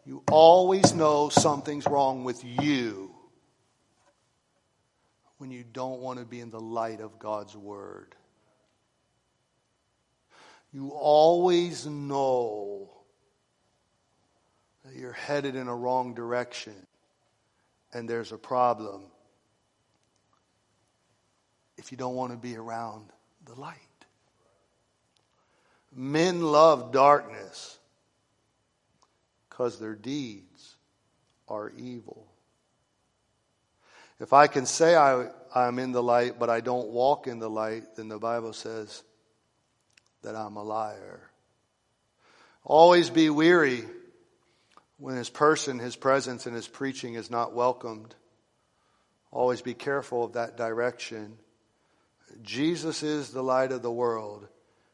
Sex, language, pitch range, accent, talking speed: male, English, 115-140 Hz, American, 110 wpm